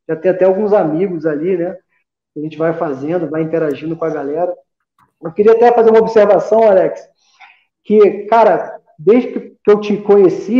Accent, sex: Brazilian, male